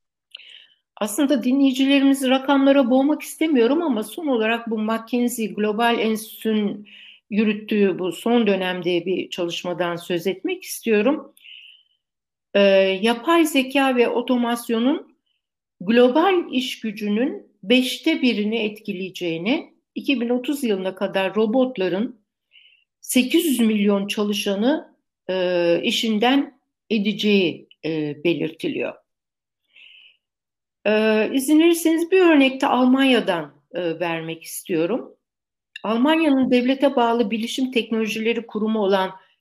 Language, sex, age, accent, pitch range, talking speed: Turkish, female, 60-79, native, 200-270 Hz, 90 wpm